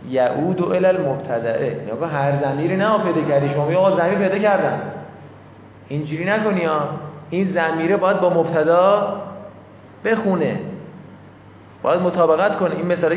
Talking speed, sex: 125 wpm, male